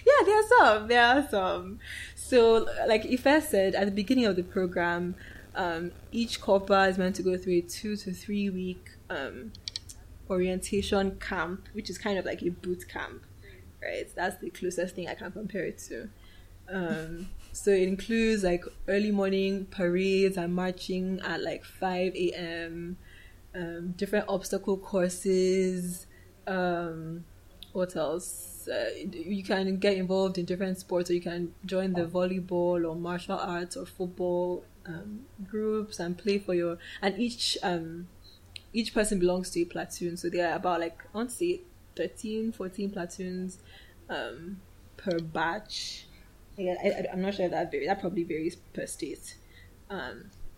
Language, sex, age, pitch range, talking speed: English, female, 20-39, 175-200 Hz, 155 wpm